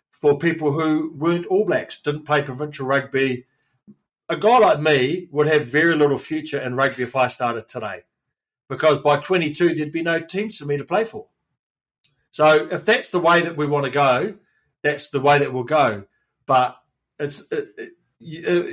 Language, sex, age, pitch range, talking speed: English, male, 40-59, 135-170 Hz, 185 wpm